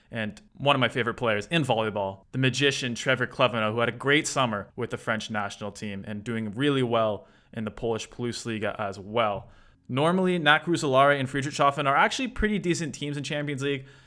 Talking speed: 195 wpm